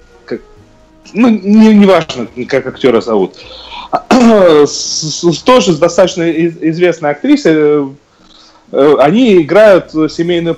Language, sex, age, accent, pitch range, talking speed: Russian, male, 40-59, native, 140-195 Hz, 90 wpm